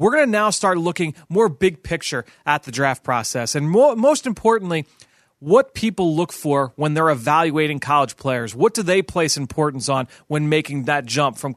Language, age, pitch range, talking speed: English, 30-49, 145-185 Hz, 185 wpm